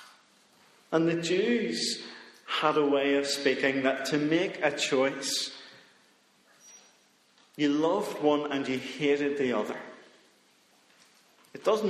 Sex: male